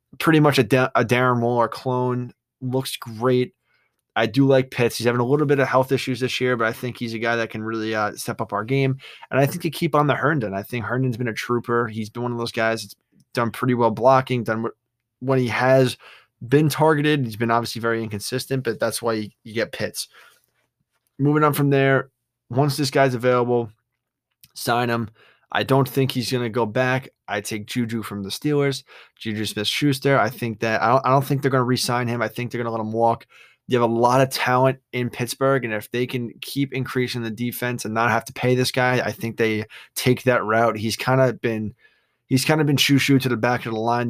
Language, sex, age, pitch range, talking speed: English, male, 20-39, 115-130 Hz, 235 wpm